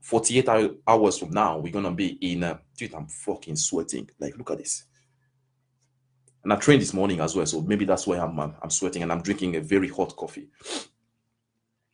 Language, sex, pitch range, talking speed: English, male, 95-130 Hz, 195 wpm